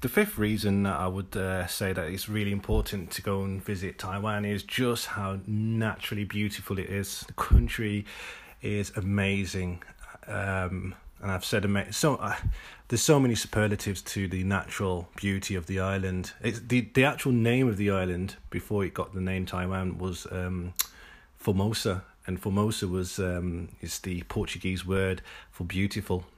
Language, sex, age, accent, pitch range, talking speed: English, male, 30-49, British, 95-105 Hz, 165 wpm